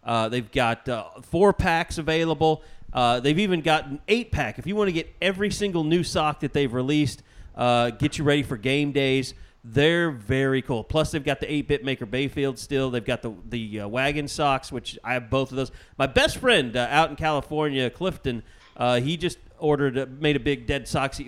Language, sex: English, male